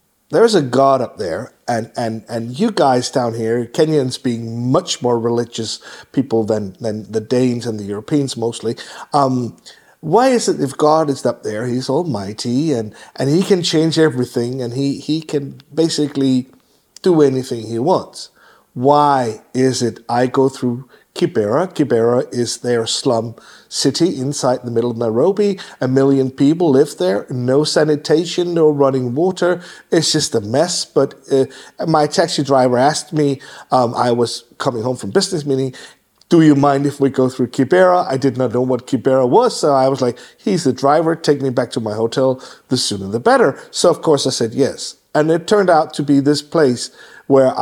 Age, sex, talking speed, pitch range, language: 50-69, male, 185 wpm, 120-150 Hz, Danish